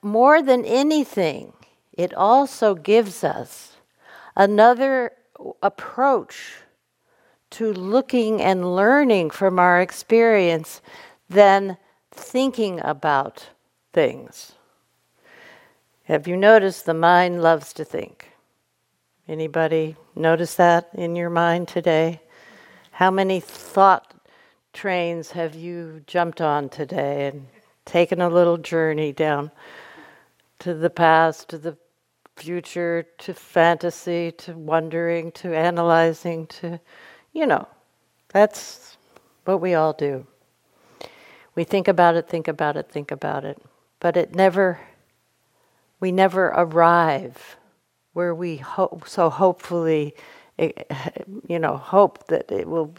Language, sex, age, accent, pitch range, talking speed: English, female, 60-79, American, 165-200 Hz, 110 wpm